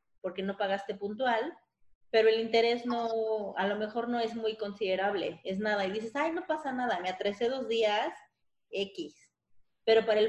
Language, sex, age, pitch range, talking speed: Spanish, female, 30-49, 190-225 Hz, 180 wpm